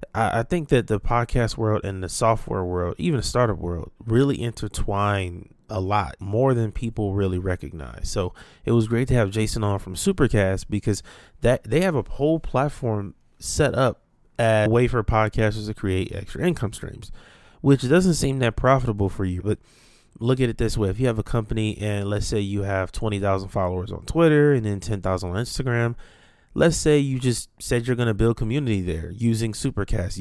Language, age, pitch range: English, 20-39, 100-125 Hz